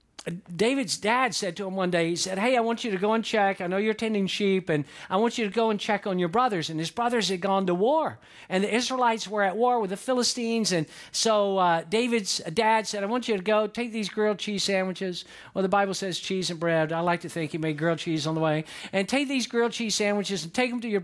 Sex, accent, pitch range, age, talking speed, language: male, American, 185-220 Hz, 50-69, 270 wpm, English